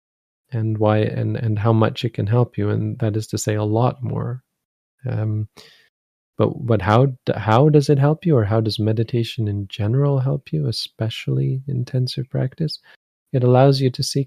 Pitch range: 110-125 Hz